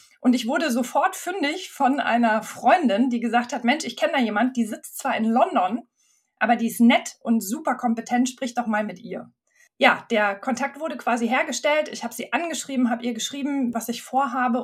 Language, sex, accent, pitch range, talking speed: German, female, German, 220-255 Hz, 200 wpm